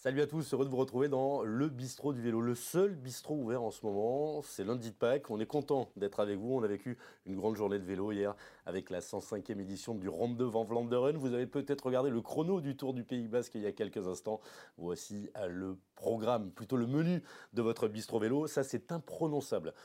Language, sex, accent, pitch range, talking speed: French, male, French, 115-155 Hz, 230 wpm